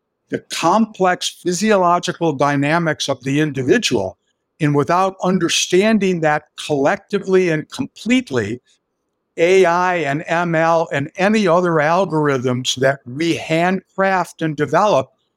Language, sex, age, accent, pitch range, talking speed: English, male, 60-79, American, 145-185 Hz, 100 wpm